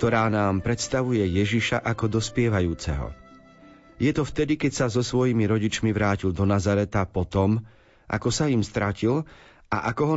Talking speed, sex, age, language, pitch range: 155 wpm, male, 40-59, Slovak, 100-125 Hz